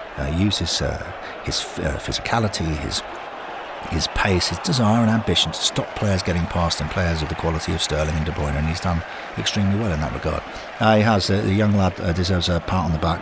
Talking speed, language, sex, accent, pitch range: 235 wpm, English, male, British, 80-100 Hz